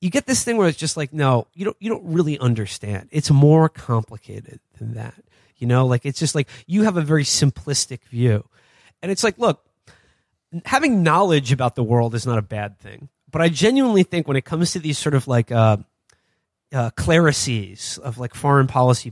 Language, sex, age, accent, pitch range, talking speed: English, male, 30-49, American, 120-165 Hz, 205 wpm